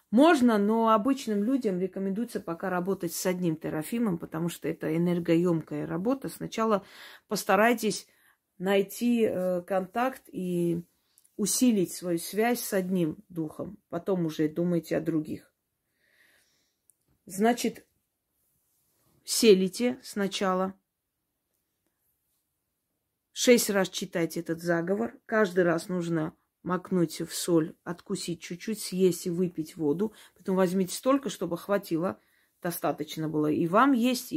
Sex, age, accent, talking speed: female, 30-49, native, 105 wpm